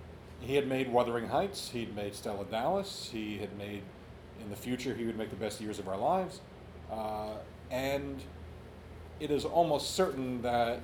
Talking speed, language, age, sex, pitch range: 170 wpm, English, 40-59, male, 105-130 Hz